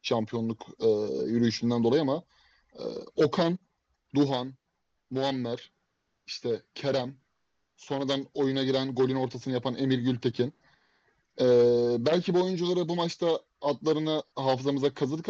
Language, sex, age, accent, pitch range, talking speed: Turkish, male, 30-49, native, 120-155 Hz, 110 wpm